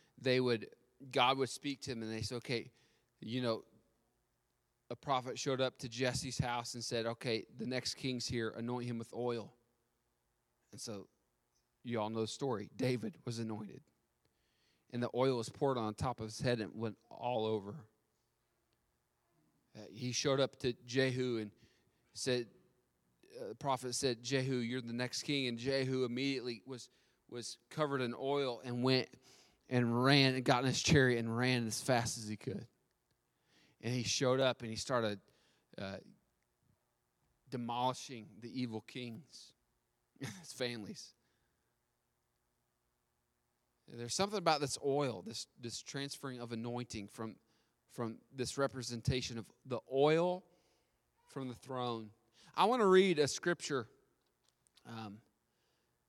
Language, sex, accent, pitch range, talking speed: English, male, American, 115-130 Hz, 145 wpm